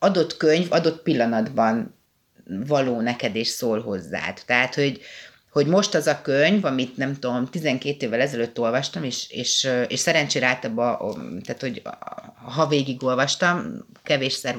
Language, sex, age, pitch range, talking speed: Hungarian, female, 30-49, 125-170 Hz, 140 wpm